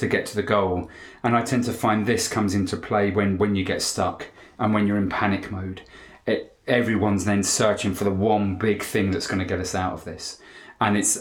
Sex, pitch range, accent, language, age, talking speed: male, 95-110 Hz, British, English, 30-49, 230 wpm